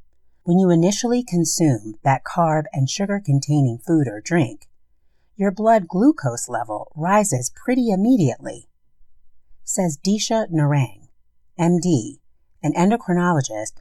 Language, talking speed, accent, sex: English, 105 wpm, American, female